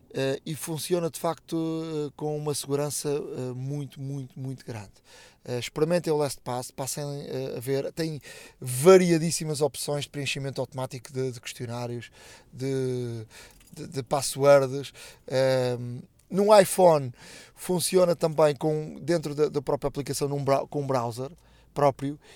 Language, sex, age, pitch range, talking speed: Portuguese, male, 20-39, 130-155 Hz, 135 wpm